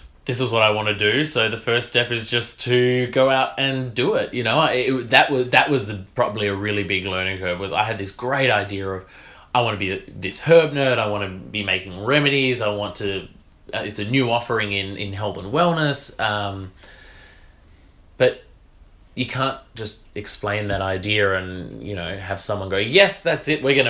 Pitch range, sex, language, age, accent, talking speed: 100-125 Hz, male, English, 20-39, Australian, 205 wpm